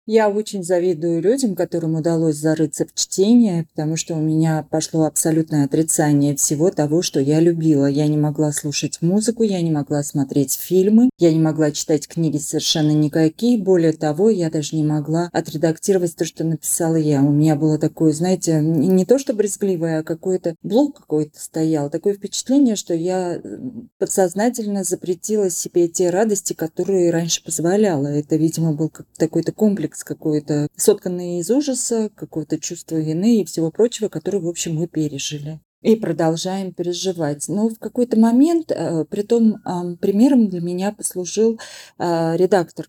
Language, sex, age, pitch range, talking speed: Russian, female, 30-49, 160-195 Hz, 150 wpm